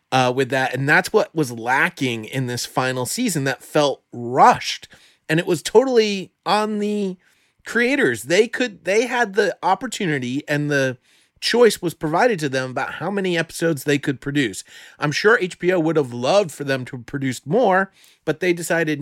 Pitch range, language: 140-210 Hz, English